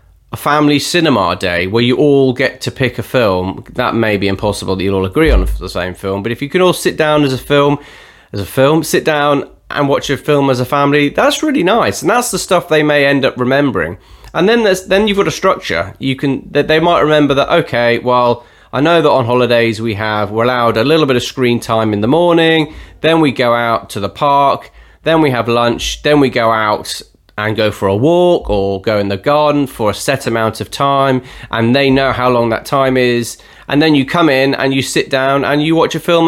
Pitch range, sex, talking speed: 115-150 Hz, male, 240 wpm